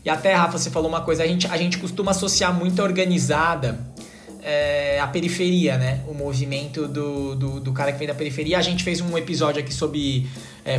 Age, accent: 20-39, Brazilian